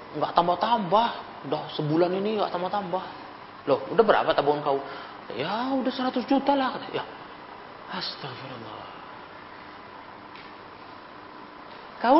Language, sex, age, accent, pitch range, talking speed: Indonesian, male, 30-49, native, 170-265 Hz, 100 wpm